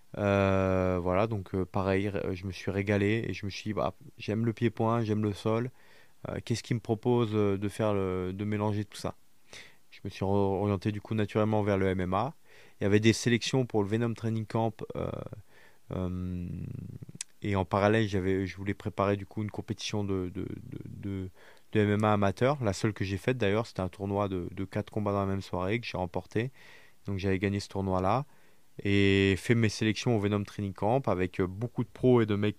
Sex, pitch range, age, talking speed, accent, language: male, 100-115 Hz, 20-39, 210 wpm, French, French